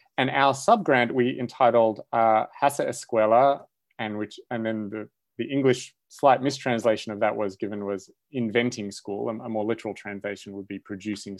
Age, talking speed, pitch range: 30-49, 165 wpm, 105-125 Hz